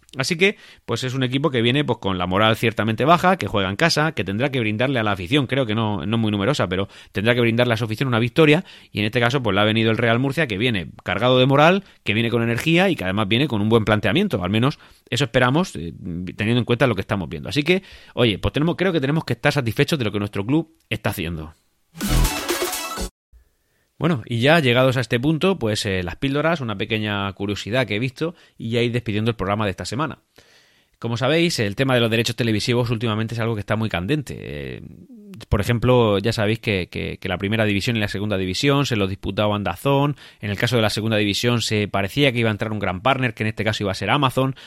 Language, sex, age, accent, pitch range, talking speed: Spanish, male, 30-49, Spanish, 105-135 Hz, 245 wpm